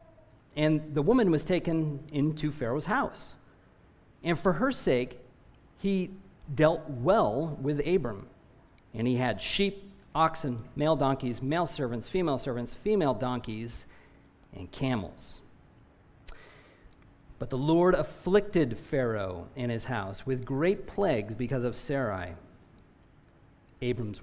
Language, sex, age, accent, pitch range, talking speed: English, male, 40-59, American, 120-180 Hz, 115 wpm